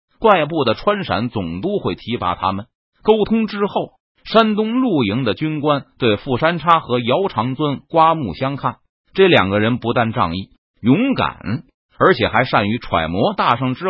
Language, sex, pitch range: Chinese, male, 115-190 Hz